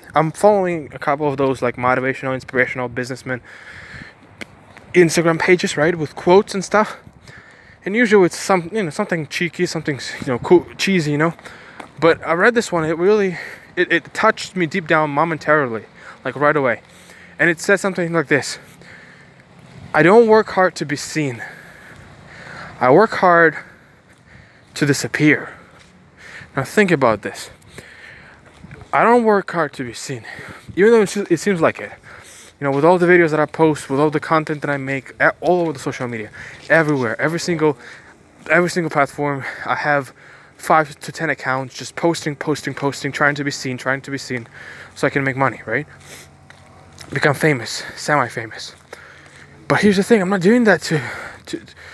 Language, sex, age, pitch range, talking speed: English, male, 20-39, 135-180 Hz, 170 wpm